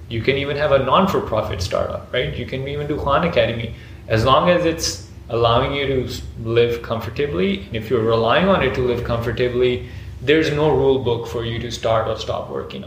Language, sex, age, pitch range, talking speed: English, male, 20-39, 110-125 Hz, 200 wpm